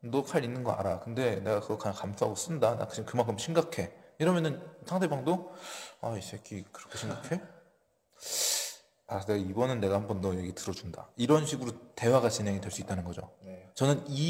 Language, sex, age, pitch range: Korean, male, 20-39, 100-155 Hz